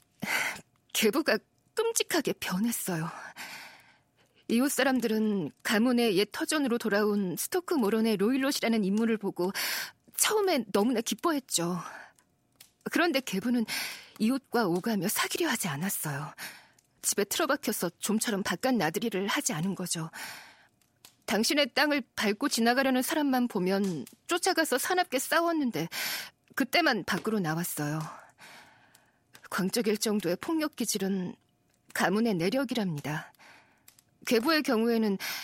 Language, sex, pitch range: Korean, female, 190-265 Hz